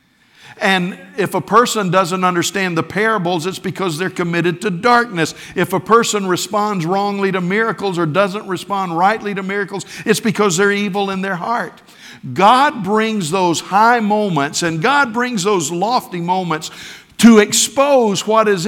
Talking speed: 155 wpm